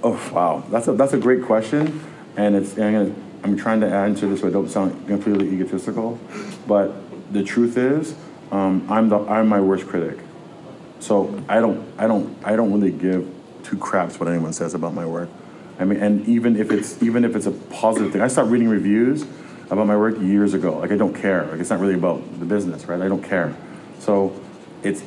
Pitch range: 95-110 Hz